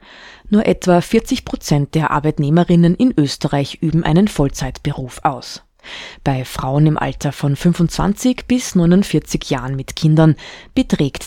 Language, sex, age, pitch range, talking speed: German, female, 20-39, 145-195 Hz, 130 wpm